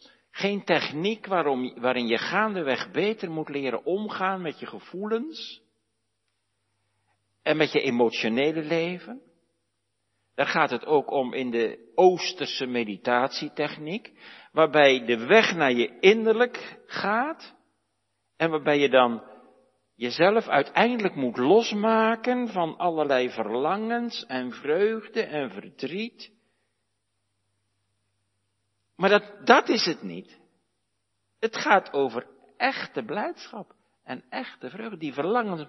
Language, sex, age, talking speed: Dutch, male, 60-79, 110 wpm